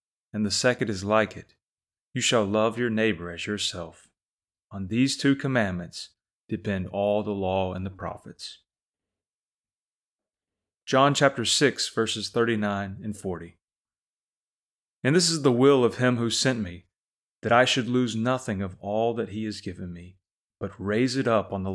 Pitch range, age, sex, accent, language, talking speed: 100-125 Hz, 30-49, male, American, English, 165 wpm